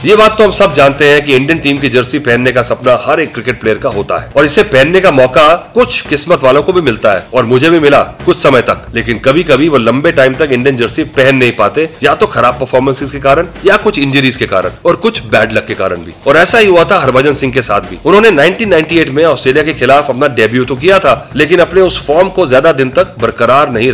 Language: Hindi